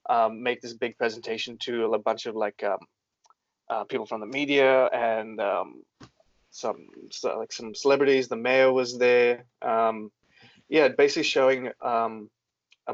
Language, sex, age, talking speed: English, male, 20-39, 150 wpm